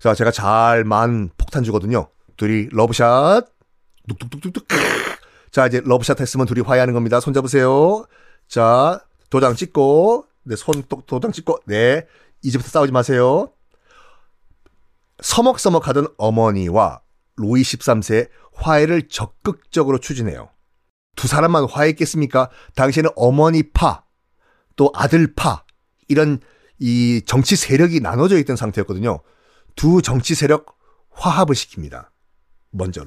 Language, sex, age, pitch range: Korean, male, 40-59, 115-160 Hz